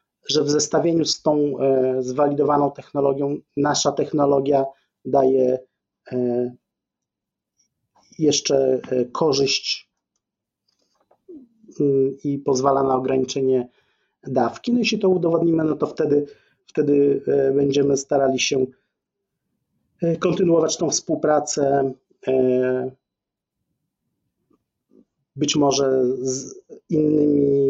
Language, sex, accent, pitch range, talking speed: Polish, male, native, 130-155 Hz, 75 wpm